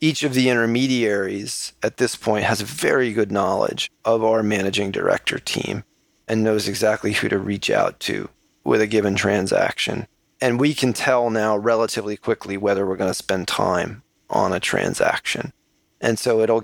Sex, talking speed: male, 175 wpm